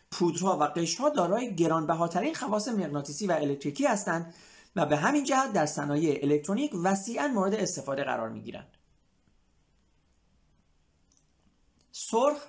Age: 40-59